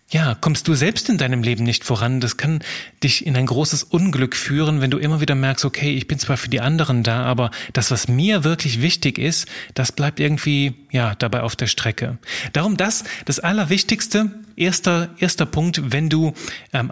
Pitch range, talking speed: 120-160 Hz, 195 wpm